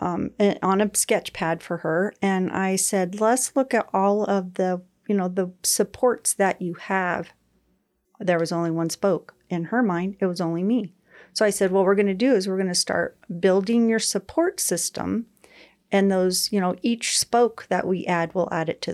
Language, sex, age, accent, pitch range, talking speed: English, female, 40-59, American, 180-200 Hz, 205 wpm